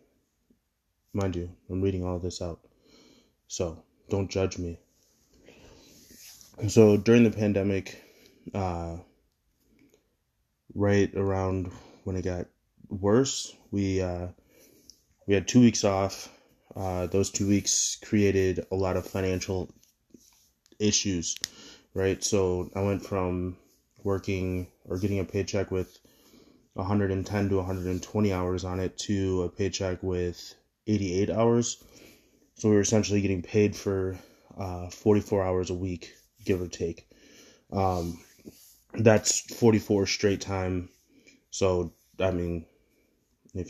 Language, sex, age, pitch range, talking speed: English, male, 20-39, 90-100 Hz, 120 wpm